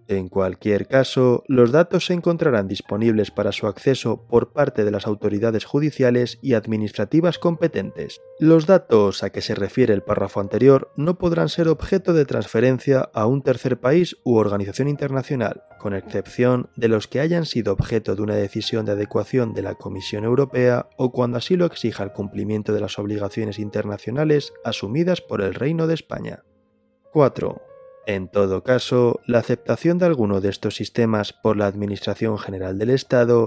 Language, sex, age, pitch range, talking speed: Spanish, male, 20-39, 105-155 Hz, 165 wpm